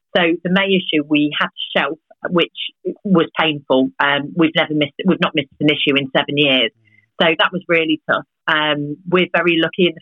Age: 40-59